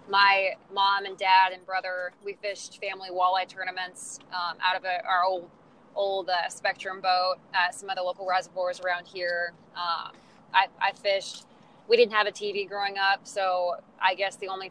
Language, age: English, 20-39